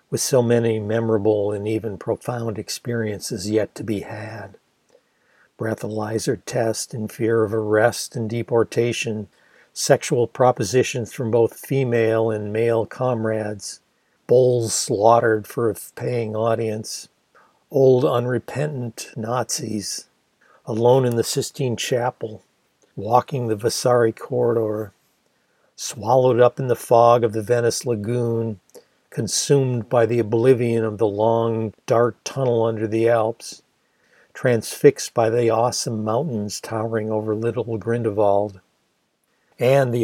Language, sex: English, male